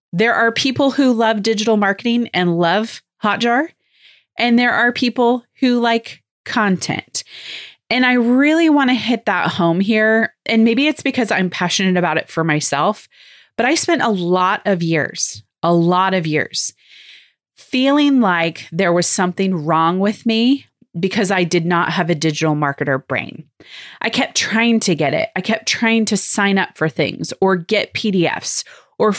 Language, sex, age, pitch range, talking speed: English, female, 30-49, 170-240 Hz, 170 wpm